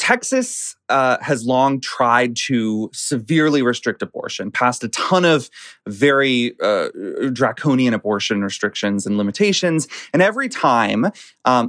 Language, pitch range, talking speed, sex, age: English, 115-165 Hz, 125 wpm, male, 30-49